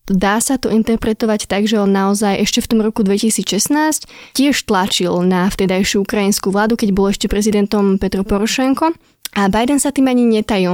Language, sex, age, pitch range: Slovak, female, 20-39, 195-230 Hz